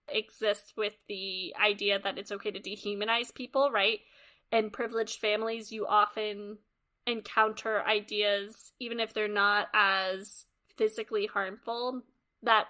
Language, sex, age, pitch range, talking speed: English, female, 20-39, 205-250 Hz, 125 wpm